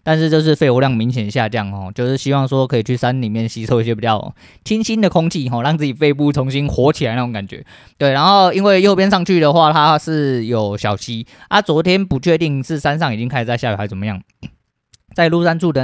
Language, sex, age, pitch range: Chinese, male, 20-39, 105-140 Hz